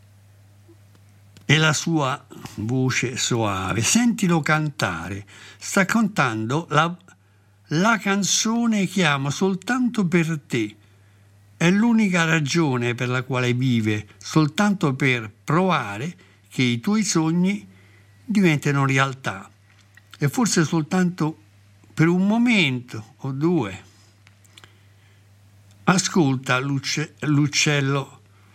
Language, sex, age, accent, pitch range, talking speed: Italian, male, 60-79, native, 100-155 Hz, 90 wpm